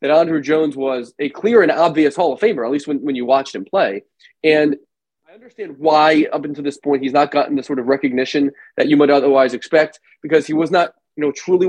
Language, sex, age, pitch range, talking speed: English, male, 20-39, 140-190 Hz, 235 wpm